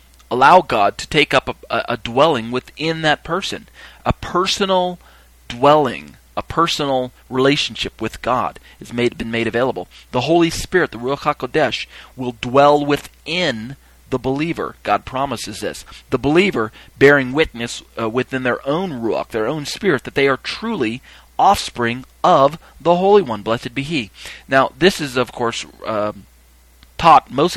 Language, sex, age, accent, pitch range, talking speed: English, male, 40-59, American, 115-155 Hz, 150 wpm